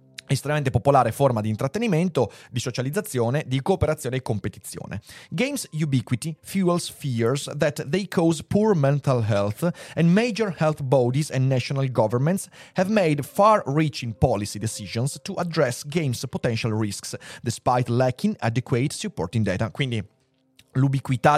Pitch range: 115-155 Hz